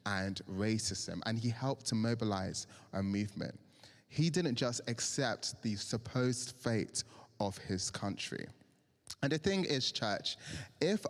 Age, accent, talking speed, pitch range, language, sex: 20-39, British, 135 wpm, 105-135 Hz, English, male